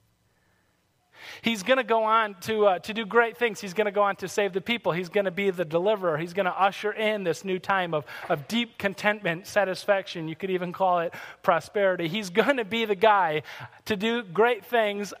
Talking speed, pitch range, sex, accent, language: 215 wpm, 150-205 Hz, male, American, English